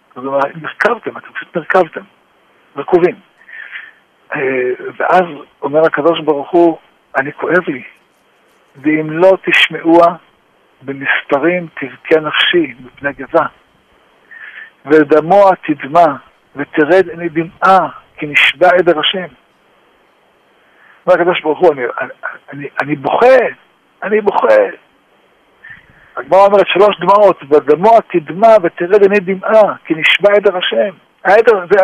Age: 60-79